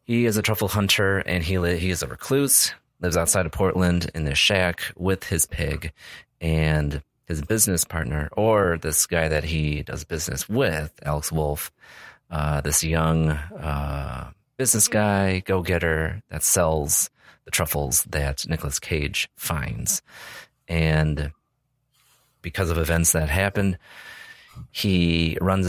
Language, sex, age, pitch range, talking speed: English, male, 30-49, 80-105 Hz, 140 wpm